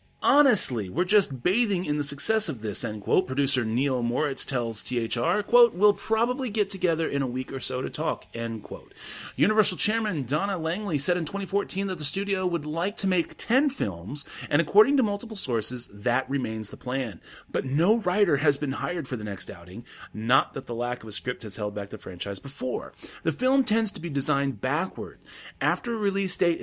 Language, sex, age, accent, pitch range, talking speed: English, male, 30-49, American, 115-180 Hz, 200 wpm